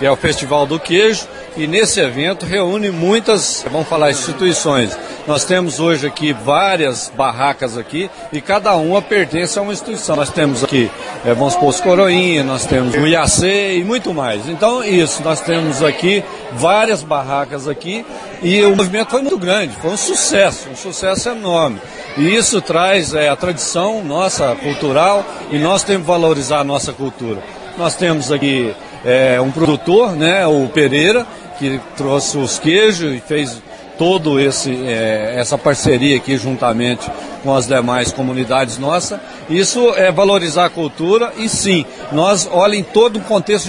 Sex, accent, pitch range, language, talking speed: male, Brazilian, 145-195 Hz, Portuguese, 160 wpm